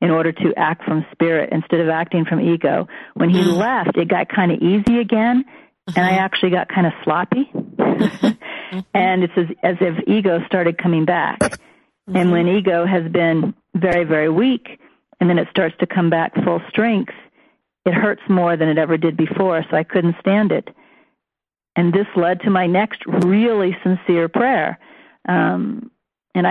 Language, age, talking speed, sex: English, 40-59, 175 wpm, female